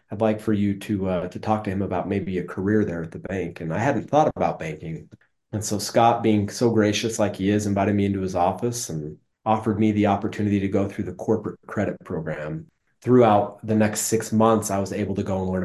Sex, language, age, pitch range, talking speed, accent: male, English, 30-49, 95-110 Hz, 240 wpm, American